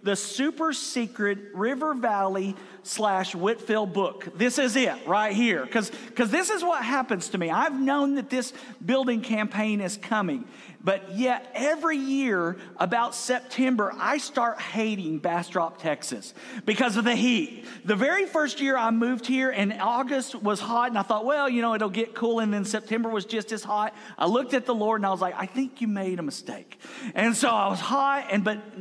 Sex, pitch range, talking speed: male, 195-255 Hz, 190 wpm